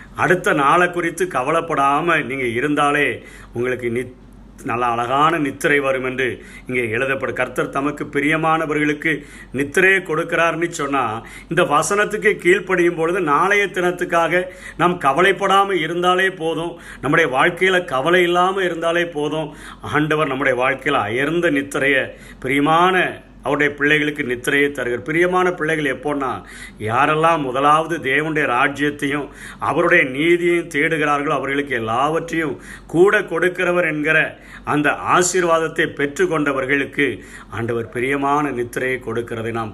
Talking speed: 105 wpm